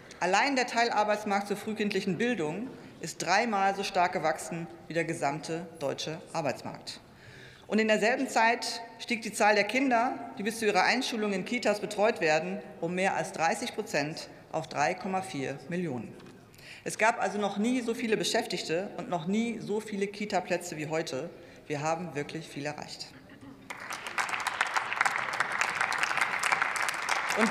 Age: 40-59